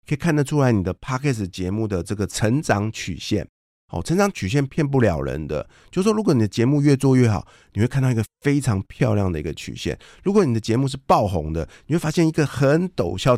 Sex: male